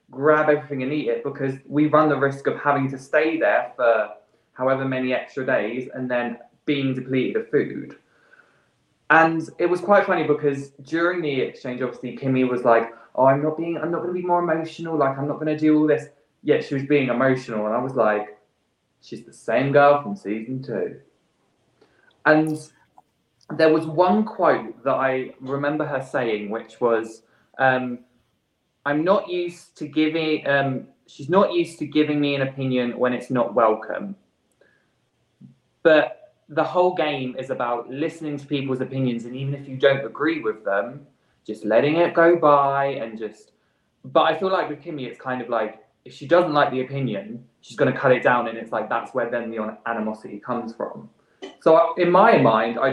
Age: 20-39